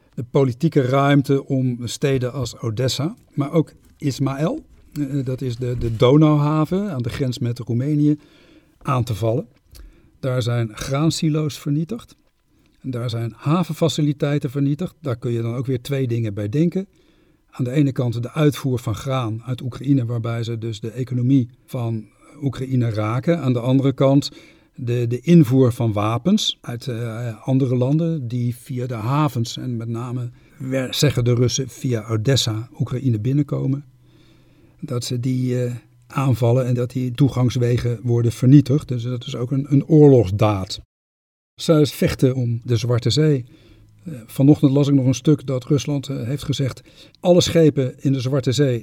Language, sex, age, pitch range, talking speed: Dutch, male, 50-69, 120-145 Hz, 155 wpm